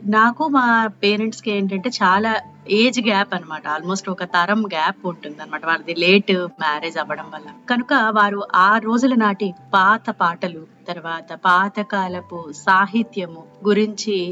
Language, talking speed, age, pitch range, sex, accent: Telugu, 130 wpm, 30-49, 165-210 Hz, female, native